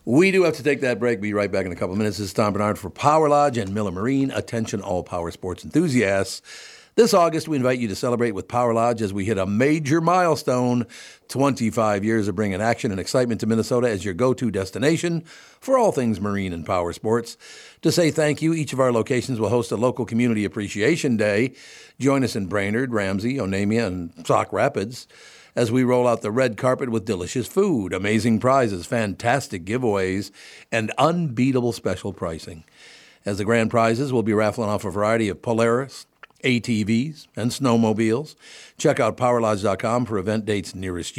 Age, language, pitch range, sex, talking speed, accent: 60-79, English, 105-130 Hz, male, 190 wpm, American